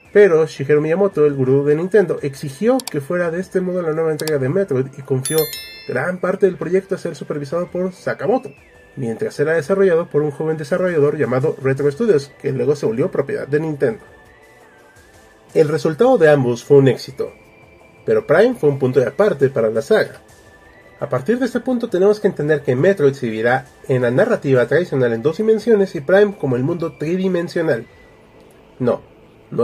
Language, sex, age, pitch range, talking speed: Spanish, male, 30-49, 140-195 Hz, 180 wpm